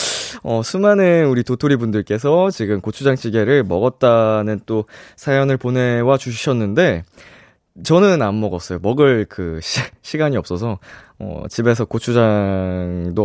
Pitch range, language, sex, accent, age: 95-150 Hz, Korean, male, native, 20-39